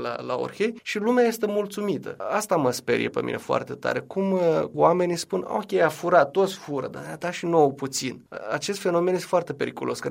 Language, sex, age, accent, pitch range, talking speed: Romanian, male, 20-39, native, 140-190 Hz, 200 wpm